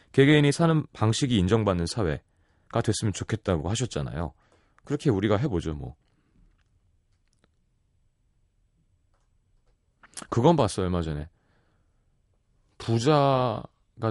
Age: 30-49